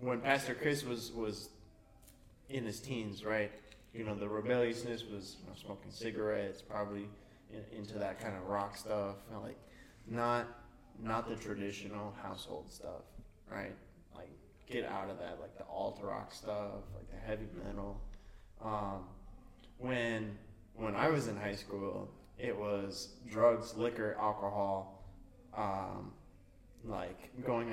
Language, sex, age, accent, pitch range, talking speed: English, male, 20-39, American, 100-115 Hz, 140 wpm